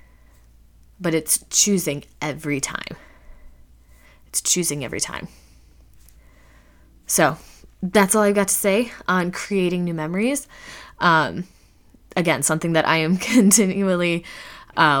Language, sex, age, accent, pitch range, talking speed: English, female, 20-39, American, 145-185 Hz, 110 wpm